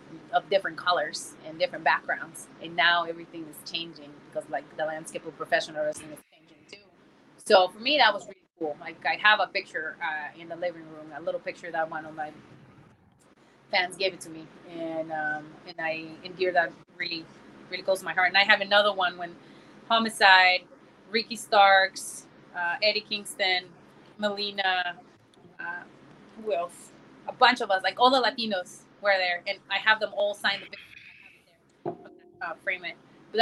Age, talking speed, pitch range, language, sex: 20-39, 175 wpm, 175-220 Hz, English, female